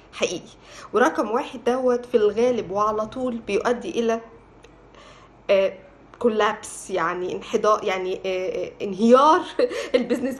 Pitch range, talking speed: 220-255 Hz, 105 wpm